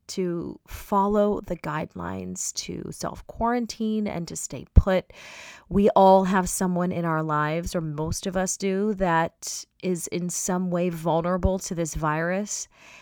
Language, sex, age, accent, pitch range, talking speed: English, female, 30-49, American, 170-215 Hz, 150 wpm